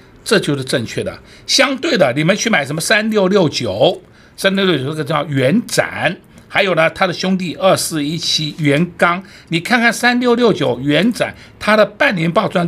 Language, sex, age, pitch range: Chinese, male, 60-79, 150-215 Hz